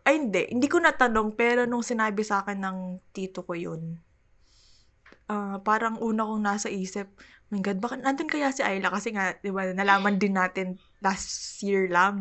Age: 20-39